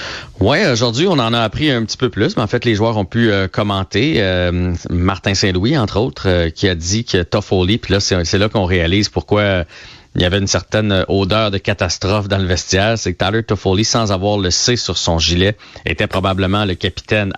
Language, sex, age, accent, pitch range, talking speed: French, male, 40-59, Canadian, 95-115 Hz, 225 wpm